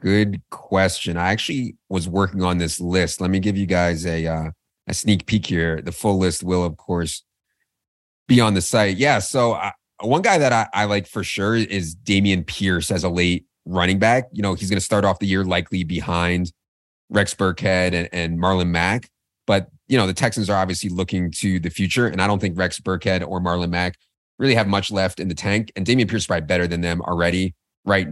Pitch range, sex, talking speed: 90-105 Hz, male, 220 wpm